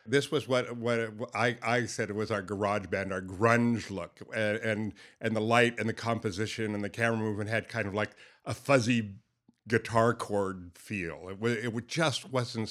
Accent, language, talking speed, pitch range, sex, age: American, English, 195 wpm, 100-115 Hz, male, 50-69